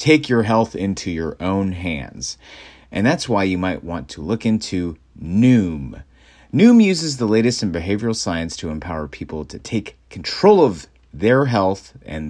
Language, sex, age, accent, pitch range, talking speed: English, male, 30-49, American, 80-120 Hz, 165 wpm